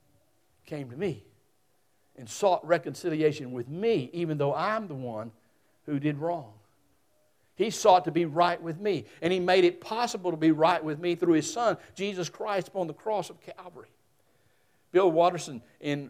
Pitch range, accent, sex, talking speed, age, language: 130-175 Hz, American, male, 170 wpm, 60-79, English